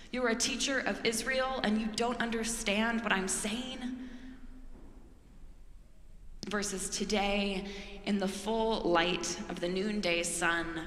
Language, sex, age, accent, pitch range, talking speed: English, female, 20-39, American, 180-210 Hz, 125 wpm